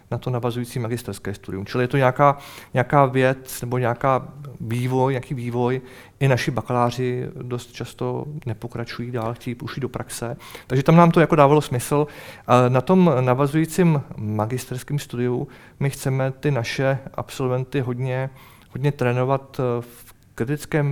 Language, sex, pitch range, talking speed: Czech, male, 120-135 Hz, 135 wpm